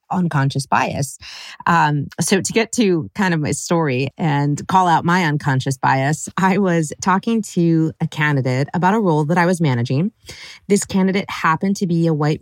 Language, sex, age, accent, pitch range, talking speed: English, female, 30-49, American, 150-195 Hz, 180 wpm